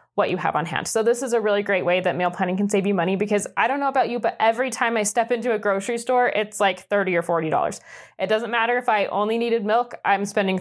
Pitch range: 195-240 Hz